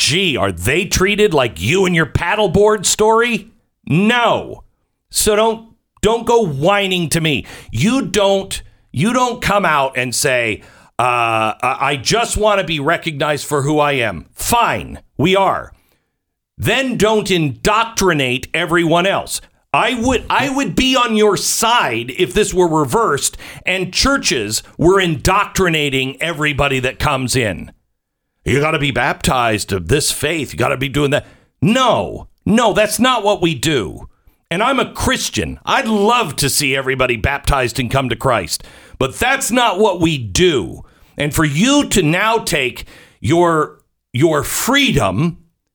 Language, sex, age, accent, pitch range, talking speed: English, male, 50-69, American, 135-215 Hz, 150 wpm